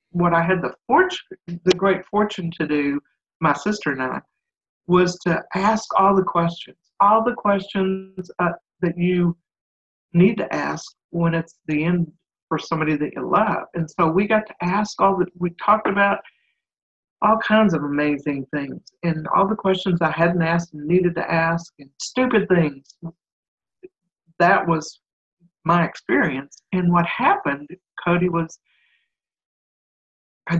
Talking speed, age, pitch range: 150 wpm, 60-79, 150-190 Hz